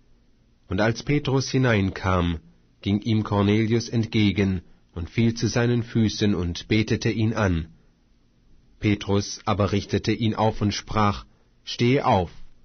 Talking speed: 125 wpm